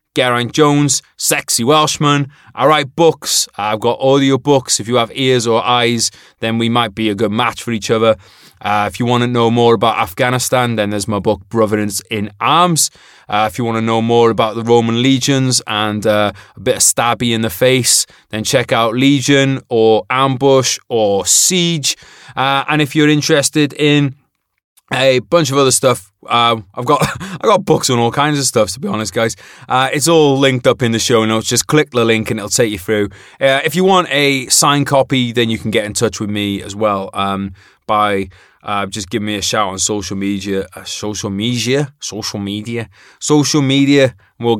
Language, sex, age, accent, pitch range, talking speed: English, male, 20-39, British, 110-135 Hz, 205 wpm